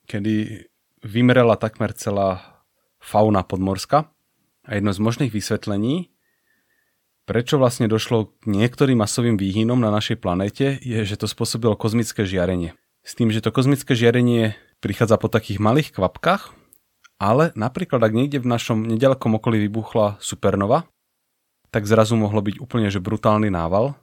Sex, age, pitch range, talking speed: male, 30-49, 105-120 Hz, 140 wpm